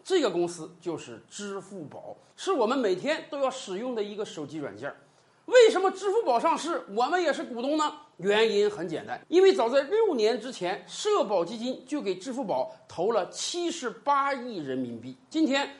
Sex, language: male, Chinese